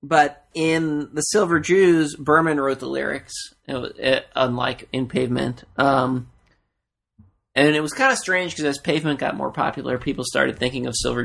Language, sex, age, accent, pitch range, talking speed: English, male, 30-49, American, 120-160 Hz, 175 wpm